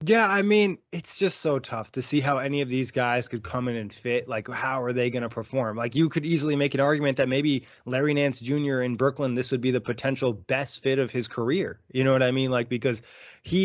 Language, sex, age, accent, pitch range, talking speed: English, male, 20-39, American, 120-140 Hz, 255 wpm